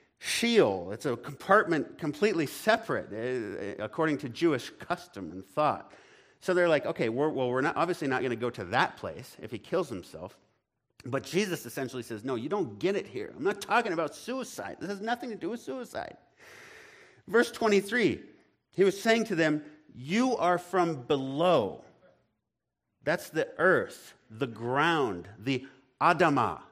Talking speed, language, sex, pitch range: 160 wpm, English, male, 125-195 Hz